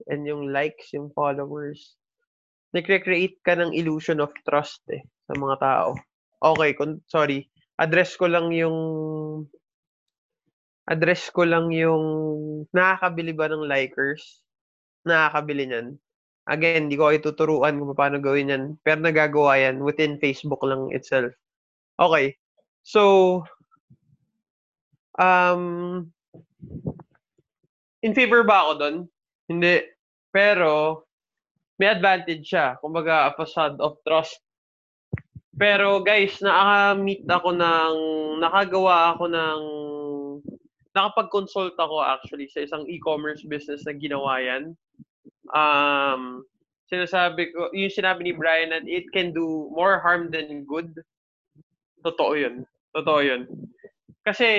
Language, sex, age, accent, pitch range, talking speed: English, male, 20-39, Filipino, 145-180 Hz, 110 wpm